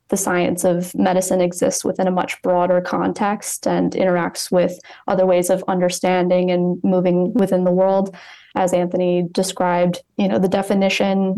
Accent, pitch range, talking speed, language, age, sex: American, 180-195 Hz, 155 wpm, English, 20-39, female